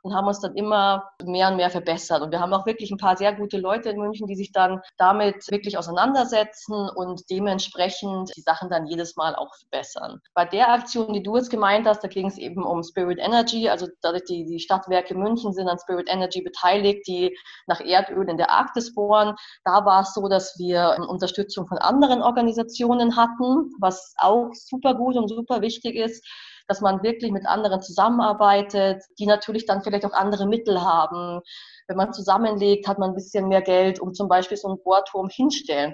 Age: 20-39